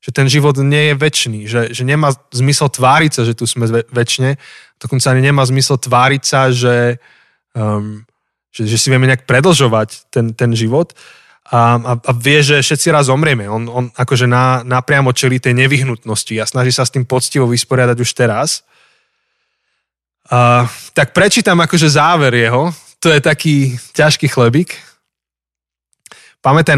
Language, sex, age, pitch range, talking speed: Slovak, male, 20-39, 115-140 Hz, 155 wpm